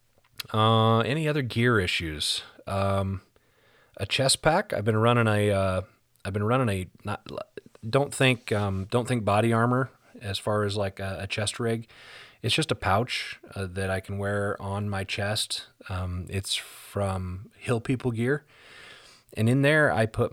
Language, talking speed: English, 170 wpm